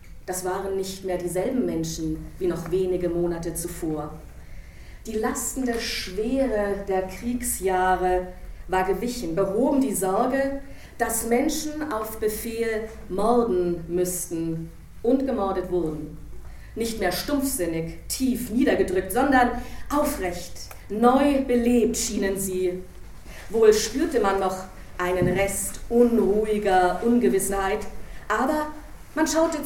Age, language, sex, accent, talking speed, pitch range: 40-59, German, female, German, 105 wpm, 185-245 Hz